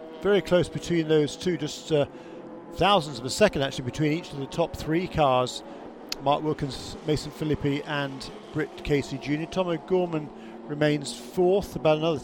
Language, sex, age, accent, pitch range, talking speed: English, male, 40-59, British, 145-185 Hz, 160 wpm